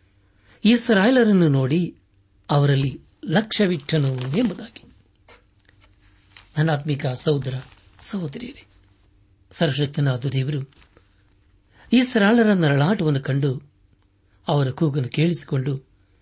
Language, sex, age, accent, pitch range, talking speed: Kannada, male, 60-79, native, 100-160 Hz, 65 wpm